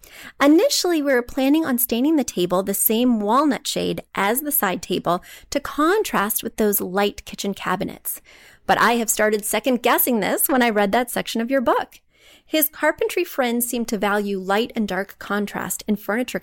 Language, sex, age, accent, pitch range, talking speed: English, female, 30-49, American, 190-250 Hz, 180 wpm